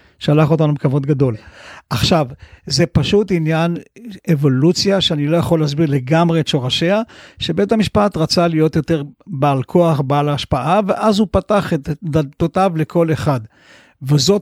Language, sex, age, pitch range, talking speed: Hebrew, male, 50-69, 145-180 Hz, 135 wpm